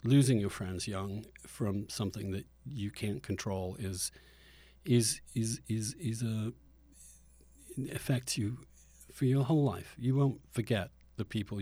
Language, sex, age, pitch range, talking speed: English, male, 50-69, 100-135 Hz, 140 wpm